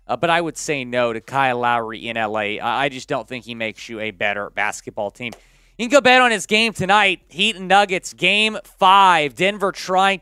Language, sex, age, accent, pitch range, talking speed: English, male, 30-49, American, 130-185 Hz, 215 wpm